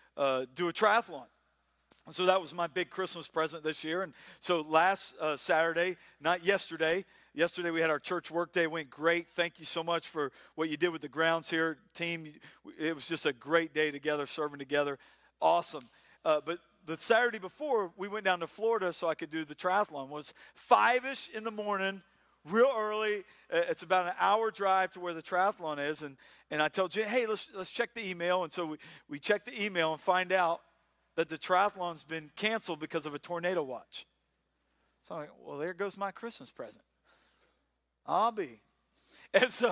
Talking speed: 195 wpm